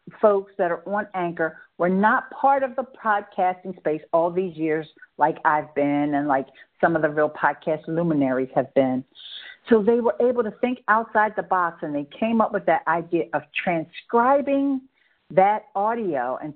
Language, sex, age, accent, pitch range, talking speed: English, female, 50-69, American, 165-220 Hz, 180 wpm